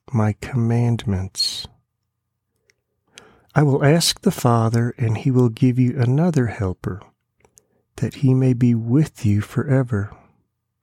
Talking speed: 115 wpm